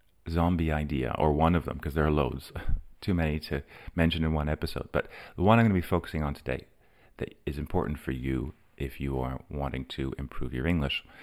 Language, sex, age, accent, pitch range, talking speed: English, male, 30-49, American, 75-95 Hz, 215 wpm